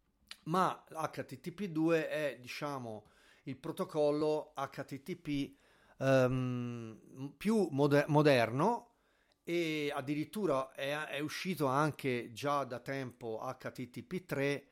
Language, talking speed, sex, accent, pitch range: Italian, 90 wpm, male, native, 130-165 Hz